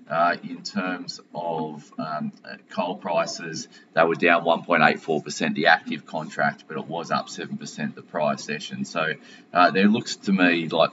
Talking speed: 160 wpm